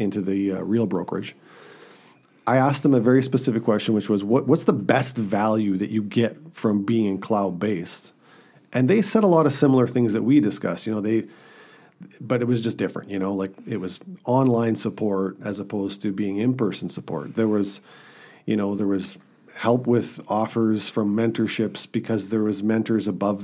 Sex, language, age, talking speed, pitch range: male, English, 50-69, 185 wpm, 100-130 Hz